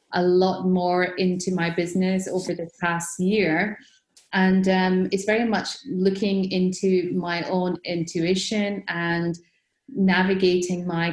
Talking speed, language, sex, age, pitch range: 125 wpm, English, female, 30-49, 175-195 Hz